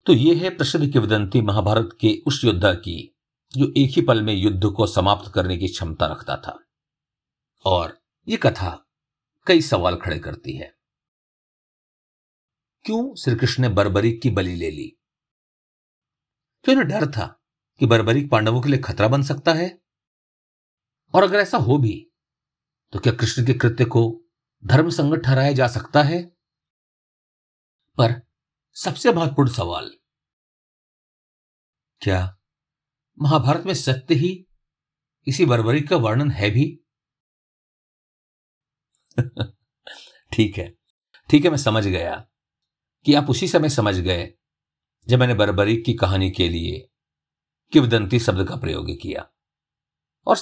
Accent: native